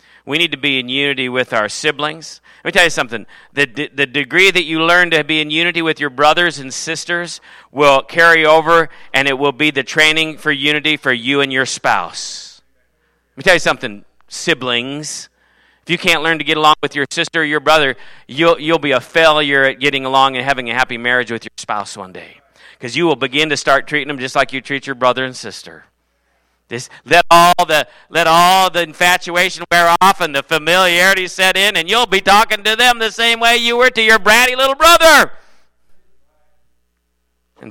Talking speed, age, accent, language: 205 wpm, 40-59, American, English